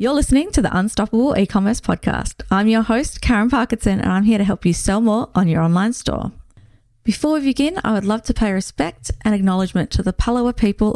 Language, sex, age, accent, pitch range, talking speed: English, female, 30-49, Australian, 180-220 Hz, 215 wpm